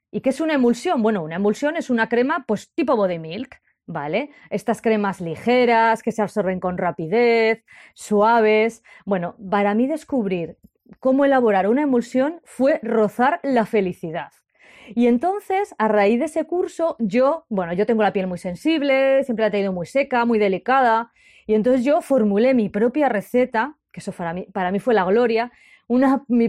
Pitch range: 205-265 Hz